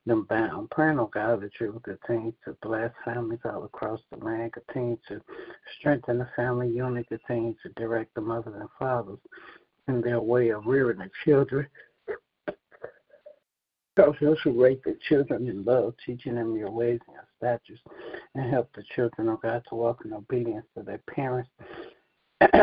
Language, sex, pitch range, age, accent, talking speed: English, male, 110-125 Hz, 60-79, American, 170 wpm